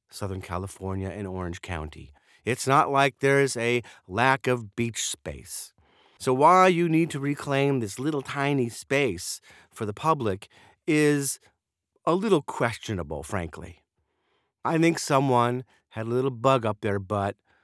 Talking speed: 145 wpm